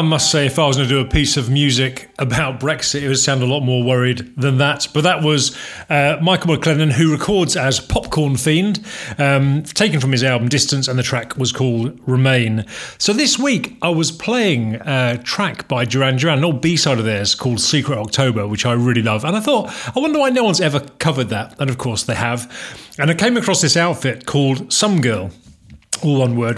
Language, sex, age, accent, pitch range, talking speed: English, male, 40-59, British, 120-155 Hz, 220 wpm